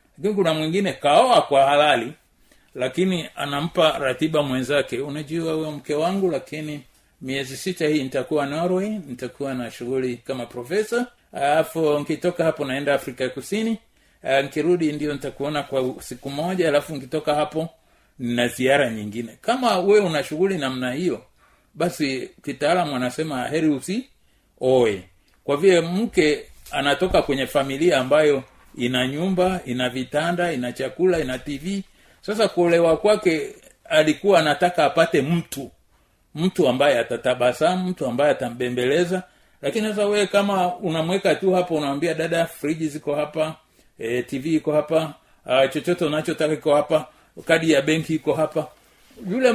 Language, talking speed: Swahili, 130 wpm